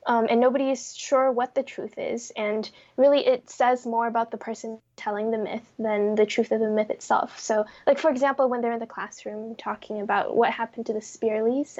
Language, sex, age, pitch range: English, female, 10-29, 220-255 Hz